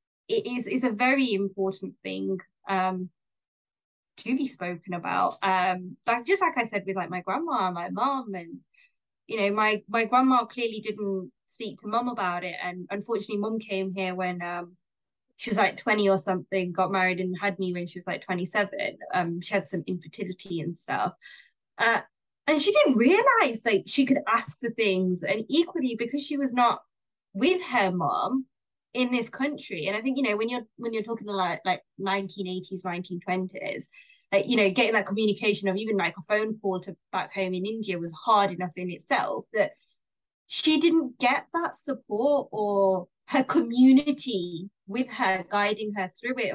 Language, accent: English, British